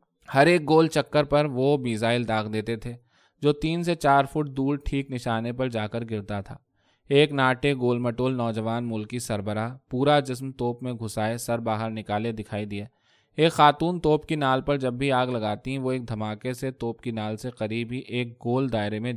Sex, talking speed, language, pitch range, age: male, 205 wpm, Urdu, 115-150 Hz, 20-39